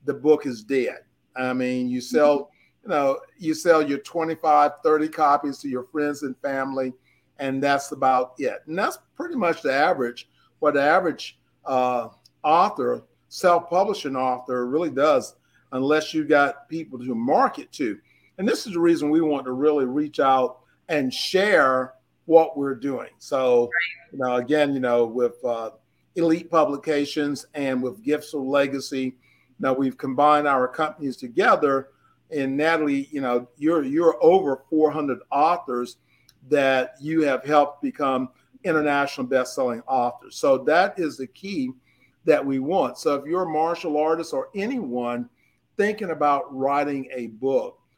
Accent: American